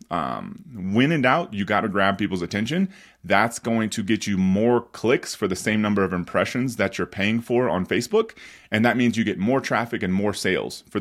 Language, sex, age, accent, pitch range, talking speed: English, male, 30-49, American, 100-120 Hz, 220 wpm